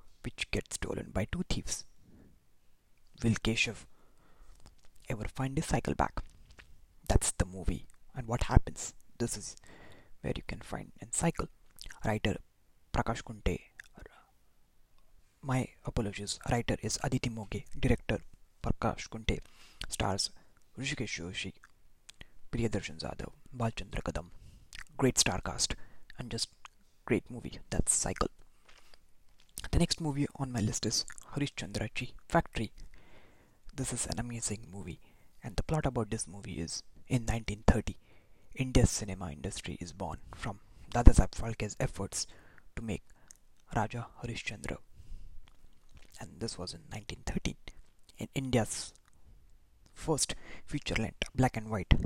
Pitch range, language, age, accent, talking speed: 95-125 Hz, English, 20-39, Indian, 115 wpm